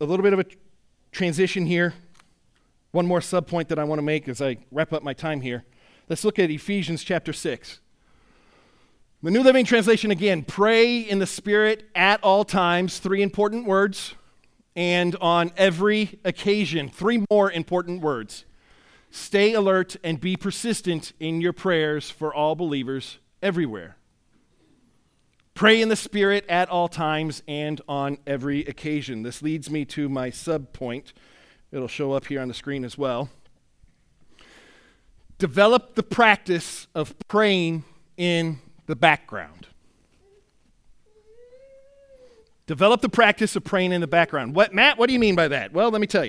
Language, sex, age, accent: English, male, 30-49, American